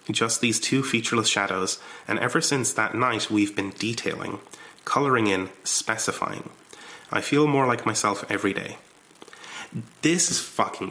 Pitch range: 105-150 Hz